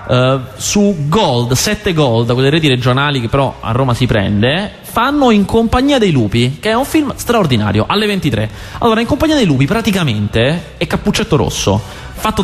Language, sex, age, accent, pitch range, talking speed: Italian, male, 30-49, native, 120-175 Hz, 175 wpm